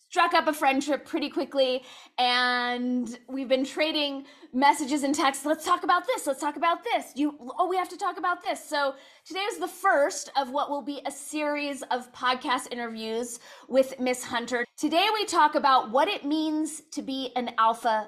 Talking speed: 190 wpm